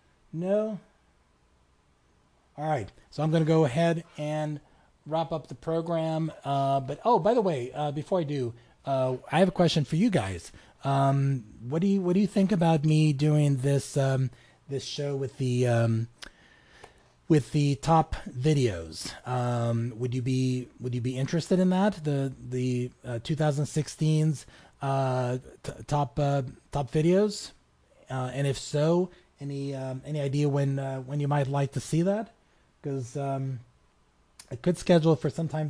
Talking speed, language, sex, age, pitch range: 165 wpm, English, male, 30-49, 120-155 Hz